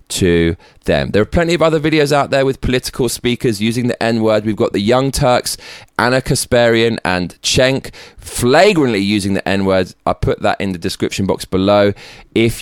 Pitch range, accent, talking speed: 95-135 Hz, British, 180 wpm